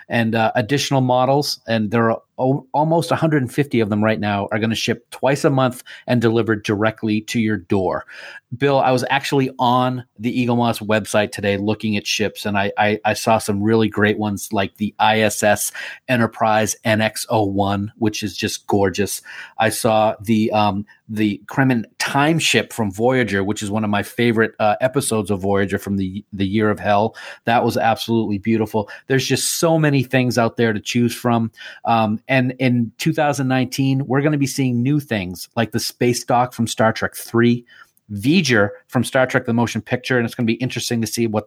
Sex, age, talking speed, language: male, 40-59, 190 wpm, English